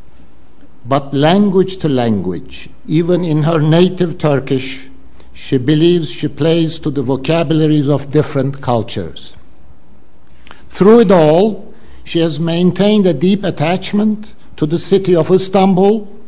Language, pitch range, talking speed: English, 135-175 Hz, 120 wpm